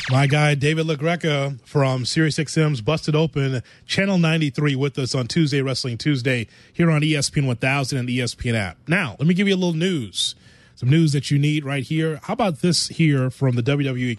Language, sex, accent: English, male, American